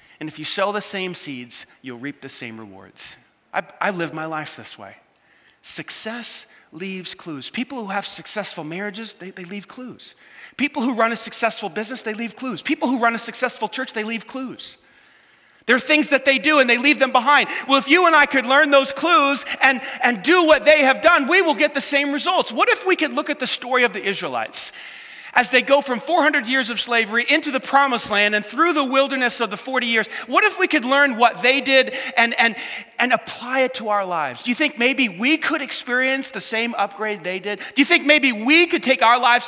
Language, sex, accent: English, male, American